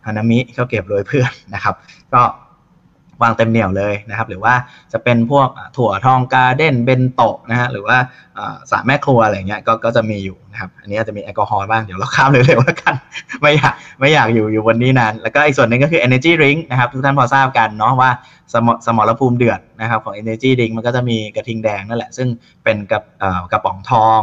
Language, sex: Thai, male